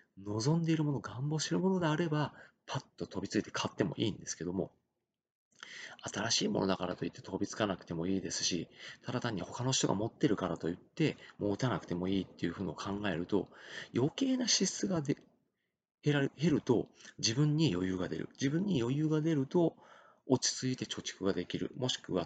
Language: Japanese